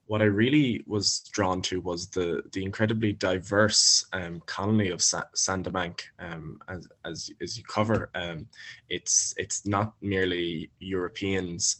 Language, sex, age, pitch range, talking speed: English, male, 20-39, 90-105 Hz, 140 wpm